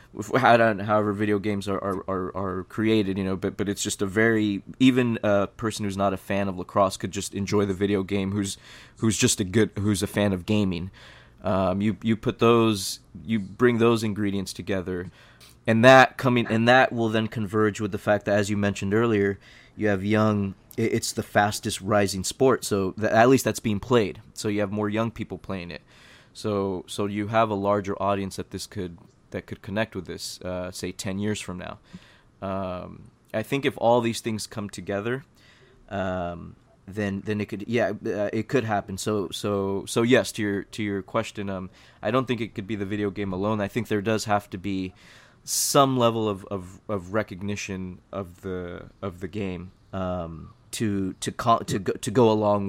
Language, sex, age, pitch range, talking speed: English, male, 20-39, 95-110 Hz, 200 wpm